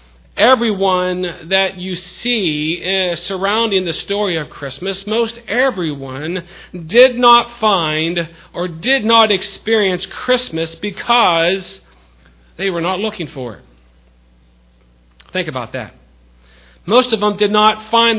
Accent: American